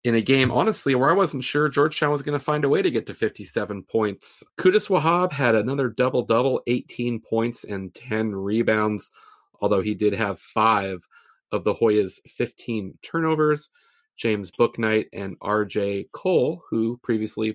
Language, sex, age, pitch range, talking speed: English, male, 30-49, 105-135 Hz, 160 wpm